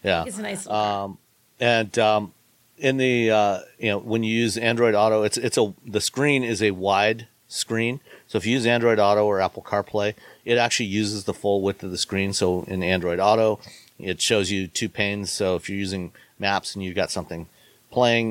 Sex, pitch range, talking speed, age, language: male, 95-115 Hz, 195 wpm, 40-59, English